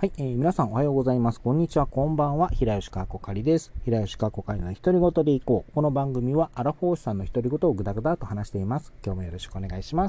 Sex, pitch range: male, 110-155 Hz